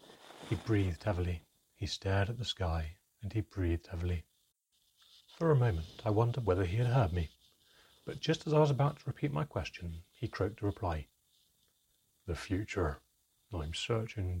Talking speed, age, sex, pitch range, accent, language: 165 wpm, 30-49, male, 85-115 Hz, British, English